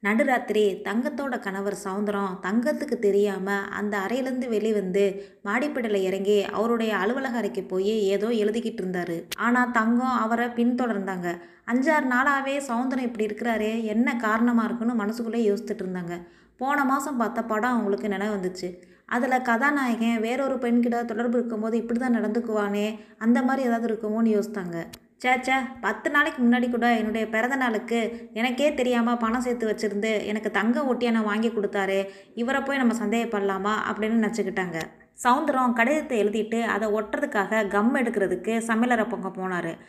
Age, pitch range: 20-39, 205-245 Hz